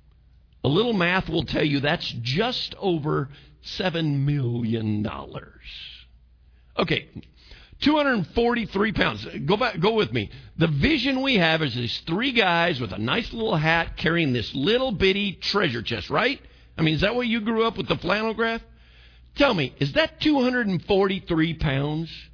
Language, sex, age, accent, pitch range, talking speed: English, male, 50-69, American, 115-190 Hz, 155 wpm